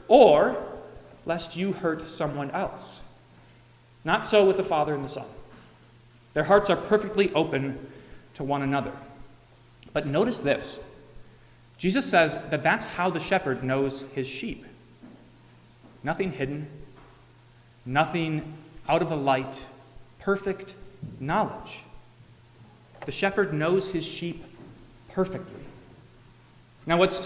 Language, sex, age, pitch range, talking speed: English, male, 30-49, 135-185 Hz, 115 wpm